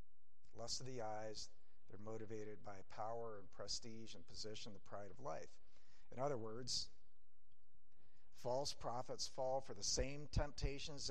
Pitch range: 105-145 Hz